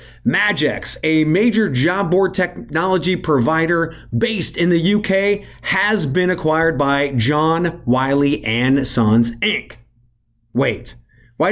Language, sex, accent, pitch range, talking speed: English, male, American, 135-190 Hz, 115 wpm